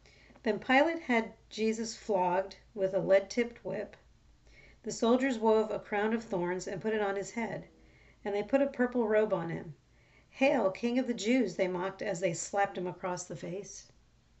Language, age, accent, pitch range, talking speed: English, 40-59, American, 185-230 Hz, 185 wpm